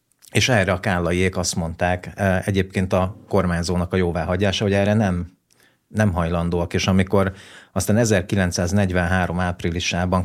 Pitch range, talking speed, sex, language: 90-100 Hz, 125 wpm, male, Hungarian